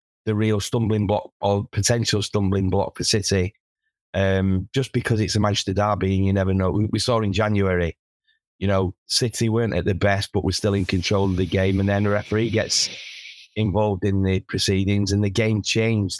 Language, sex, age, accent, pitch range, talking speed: English, male, 30-49, British, 95-110 Hz, 200 wpm